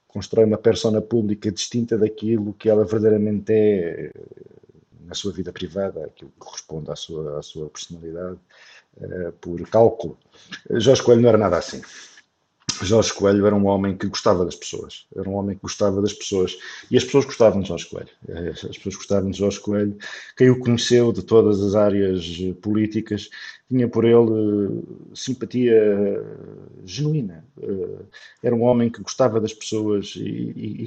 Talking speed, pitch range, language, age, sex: 155 wpm, 100-120 Hz, Portuguese, 50-69, male